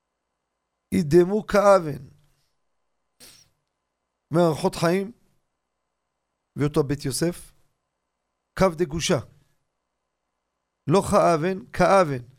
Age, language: 40-59, Hebrew